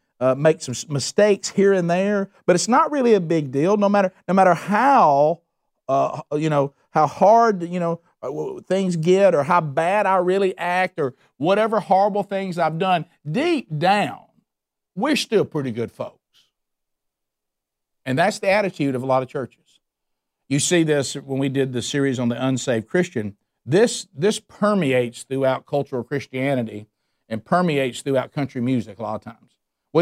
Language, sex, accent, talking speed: English, male, American, 170 wpm